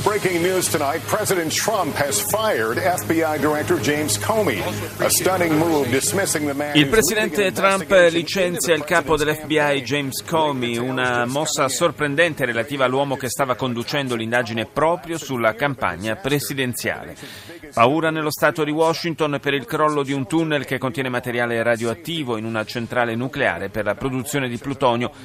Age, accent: 40-59, native